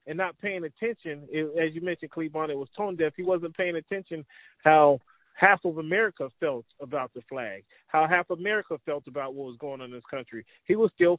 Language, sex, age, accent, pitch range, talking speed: English, male, 30-49, American, 150-185 Hz, 215 wpm